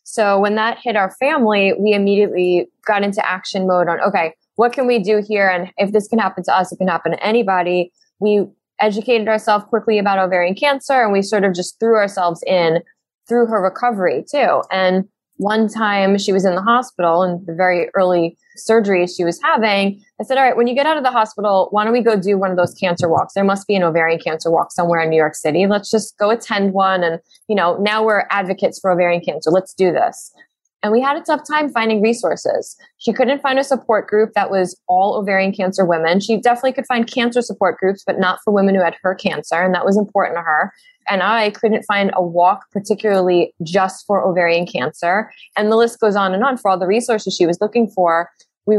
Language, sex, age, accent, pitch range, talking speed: English, female, 20-39, American, 185-225 Hz, 225 wpm